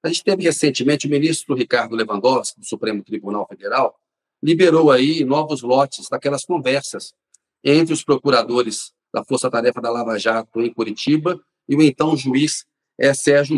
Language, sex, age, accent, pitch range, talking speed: Portuguese, male, 40-59, Brazilian, 130-175 Hz, 145 wpm